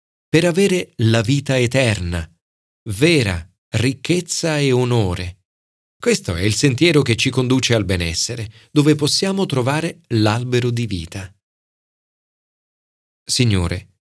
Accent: native